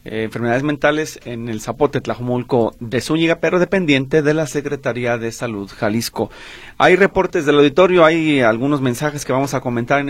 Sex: male